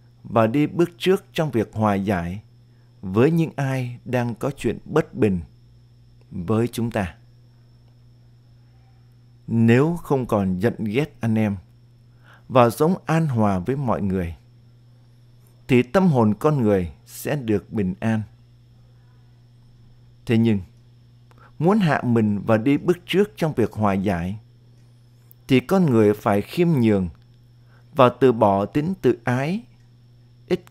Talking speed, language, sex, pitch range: 135 wpm, Vietnamese, male, 115-125 Hz